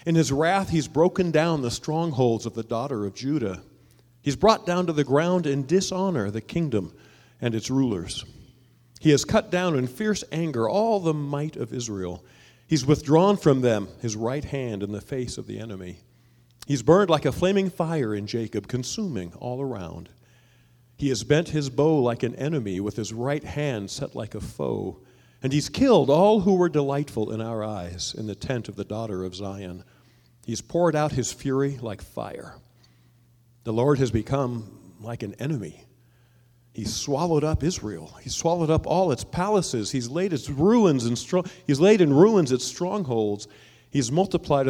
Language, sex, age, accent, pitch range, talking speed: English, male, 40-59, American, 115-155 Hz, 180 wpm